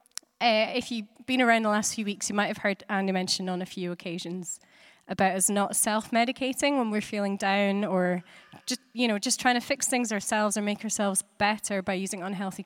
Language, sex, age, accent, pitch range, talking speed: English, female, 20-39, British, 190-225 Hz, 210 wpm